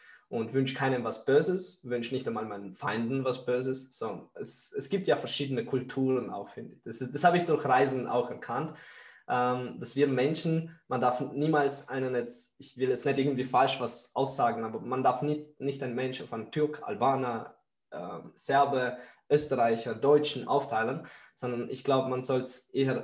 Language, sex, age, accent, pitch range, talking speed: German, male, 20-39, German, 125-145 Hz, 180 wpm